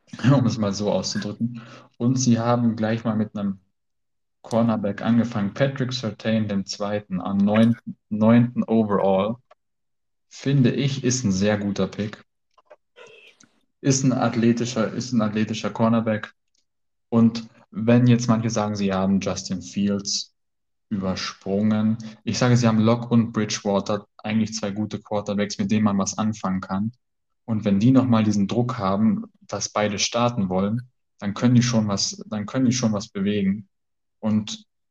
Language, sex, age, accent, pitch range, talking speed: Danish, male, 20-39, German, 100-115 Hz, 145 wpm